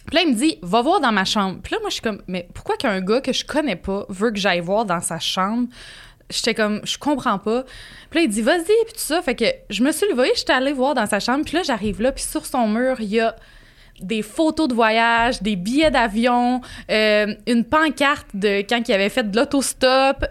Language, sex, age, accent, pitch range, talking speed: French, female, 20-39, Canadian, 210-275 Hz, 245 wpm